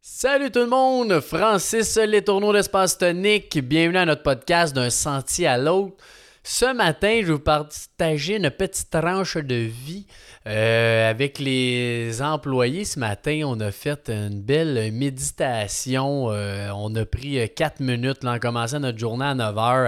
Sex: male